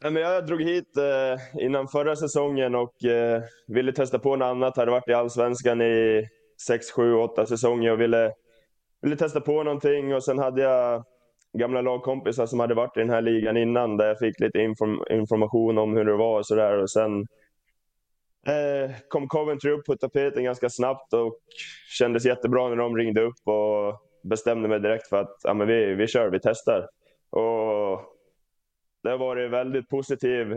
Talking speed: 180 wpm